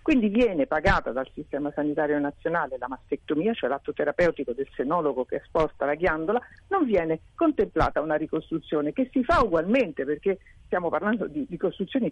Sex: female